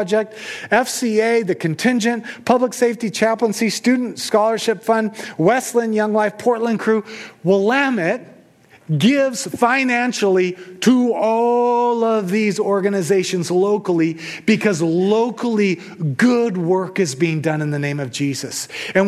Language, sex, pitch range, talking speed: English, male, 190-235 Hz, 115 wpm